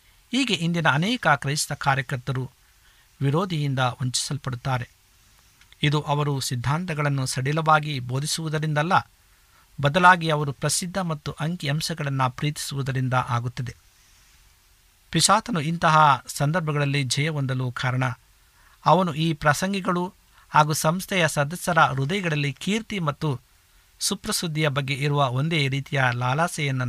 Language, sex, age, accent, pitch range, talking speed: Kannada, male, 50-69, native, 125-155 Hz, 85 wpm